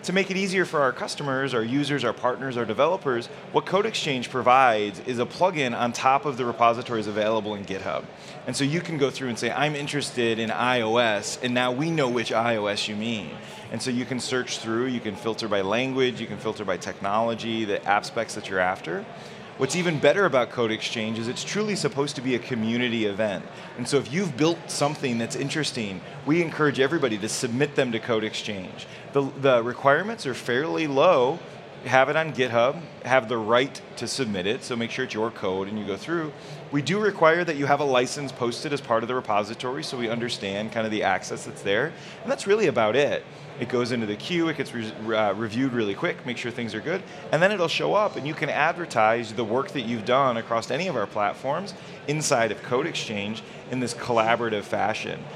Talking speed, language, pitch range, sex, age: 215 wpm, English, 115-145 Hz, male, 30-49